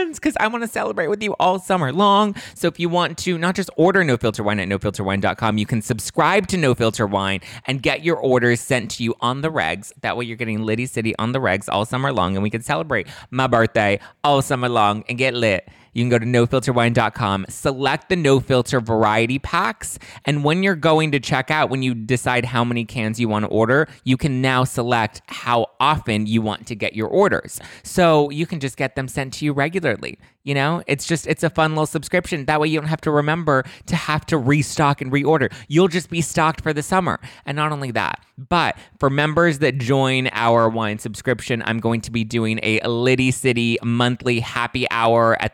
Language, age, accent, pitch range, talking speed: English, 20-39, American, 110-145 Hz, 220 wpm